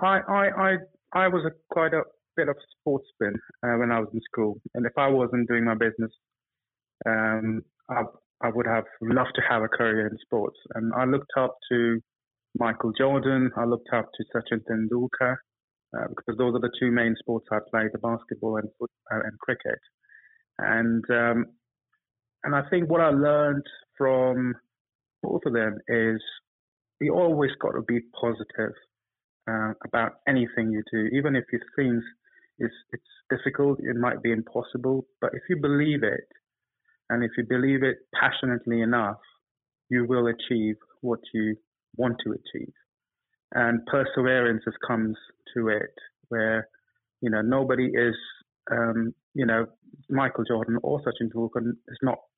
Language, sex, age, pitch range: English, male, 30-49, 115-135 Hz